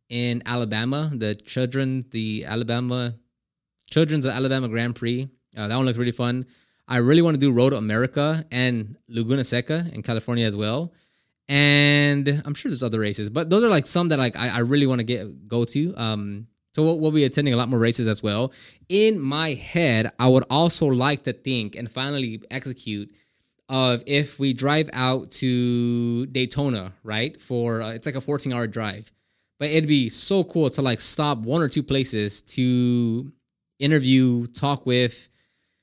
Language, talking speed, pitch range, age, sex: English, 185 wpm, 115-145 Hz, 20-39, male